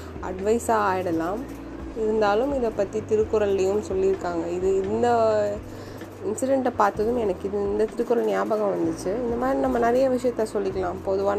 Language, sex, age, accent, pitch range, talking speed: Tamil, female, 20-39, native, 180-210 Hz, 125 wpm